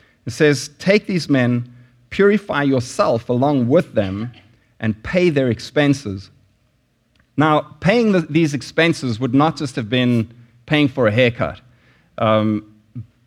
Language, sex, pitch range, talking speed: English, male, 115-145 Hz, 130 wpm